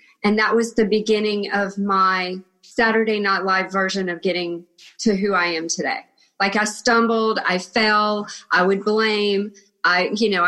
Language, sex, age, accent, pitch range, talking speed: English, female, 40-59, American, 190-235 Hz, 165 wpm